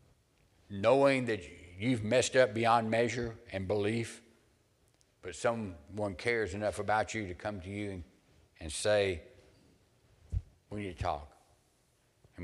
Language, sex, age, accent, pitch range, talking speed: English, male, 60-79, American, 100-130 Hz, 130 wpm